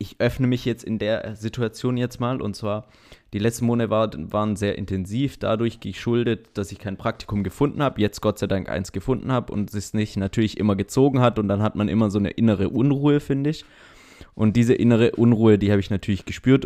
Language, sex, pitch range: German, male, 100-125 Hz